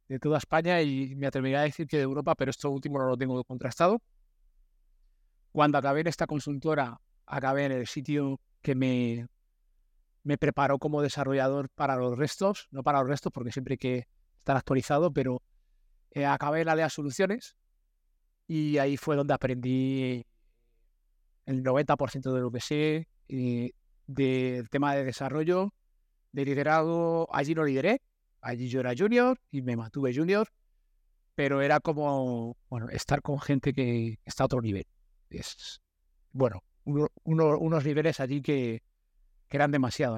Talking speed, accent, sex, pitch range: 145 wpm, Spanish, male, 120-150 Hz